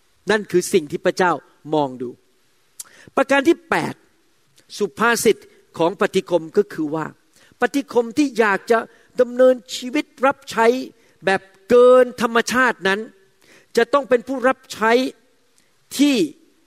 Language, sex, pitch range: Thai, male, 180-245 Hz